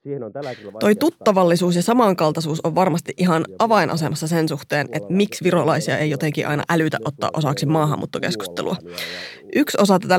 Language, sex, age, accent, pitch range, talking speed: Finnish, female, 20-39, native, 155-210 Hz, 135 wpm